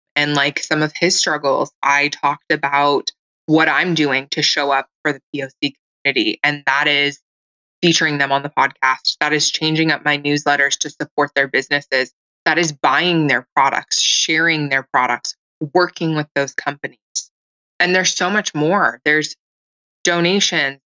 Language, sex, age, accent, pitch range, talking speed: English, female, 20-39, American, 145-170 Hz, 160 wpm